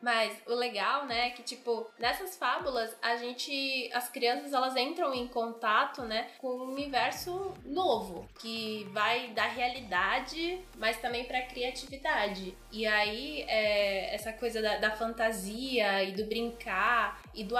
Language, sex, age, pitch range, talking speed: Portuguese, female, 10-29, 220-265 Hz, 145 wpm